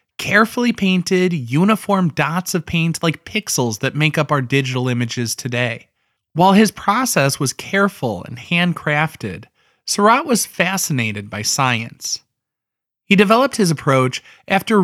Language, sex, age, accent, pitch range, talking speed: English, male, 20-39, American, 135-190 Hz, 130 wpm